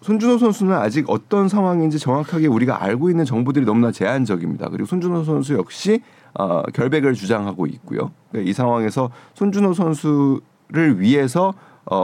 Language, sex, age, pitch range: Korean, male, 40-59, 125-180 Hz